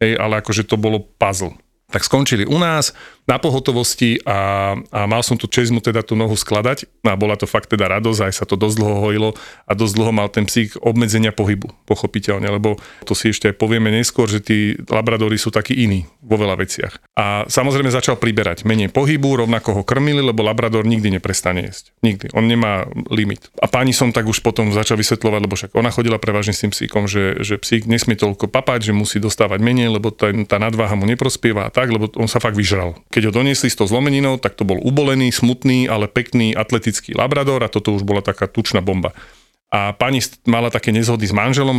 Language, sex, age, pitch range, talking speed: Slovak, male, 40-59, 105-120 Hz, 205 wpm